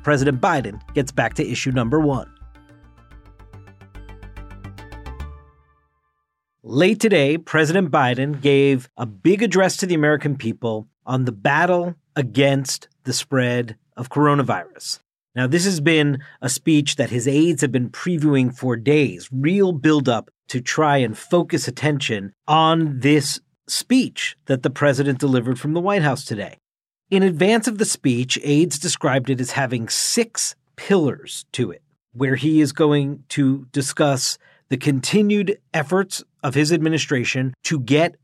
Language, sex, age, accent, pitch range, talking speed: English, male, 40-59, American, 125-165 Hz, 140 wpm